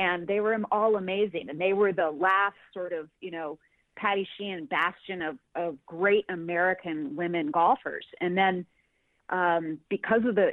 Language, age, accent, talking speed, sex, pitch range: English, 30-49, American, 165 wpm, female, 170-215 Hz